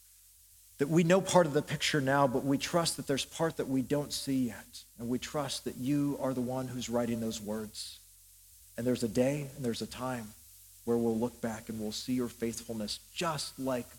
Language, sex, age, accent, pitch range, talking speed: English, male, 50-69, American, 95-135 Hz, 215 wpm